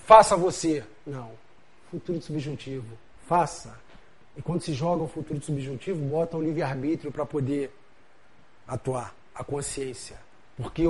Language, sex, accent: Portuguese, male, Brazilian